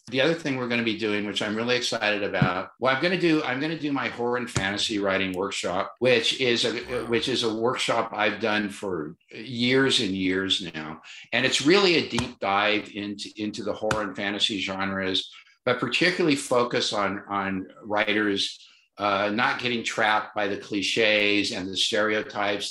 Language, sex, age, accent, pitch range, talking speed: English, male, 50-69, American, 100-125 Hz, 190 wpm